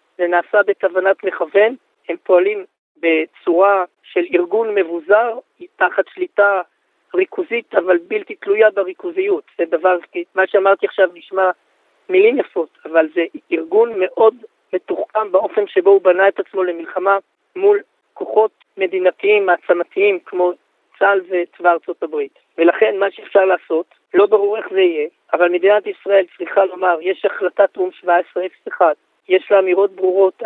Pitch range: 180-225 Hz